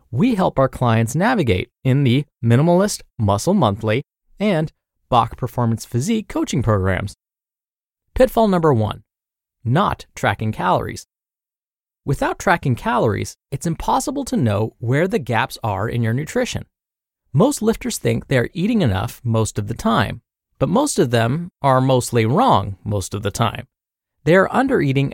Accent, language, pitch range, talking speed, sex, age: American, English, 115-190 Hz, 140 wpm, male, 30-49